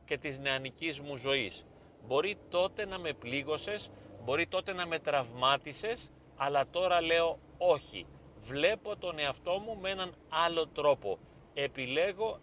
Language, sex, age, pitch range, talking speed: Greek, male, 30-49, 135-175 Hz, 135 wpm